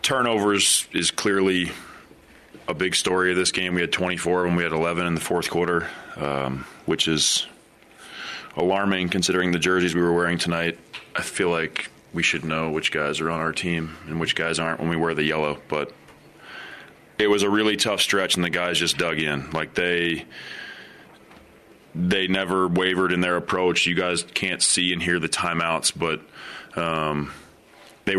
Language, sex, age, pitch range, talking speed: English, male, 20-39, 80-90 Hz, 180 wpm